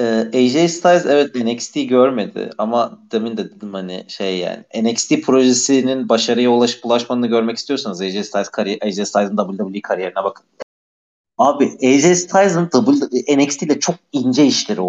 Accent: native